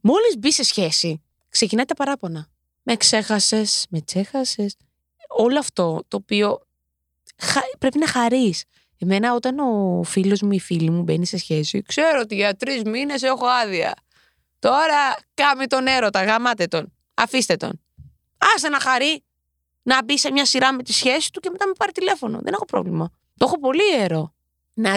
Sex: female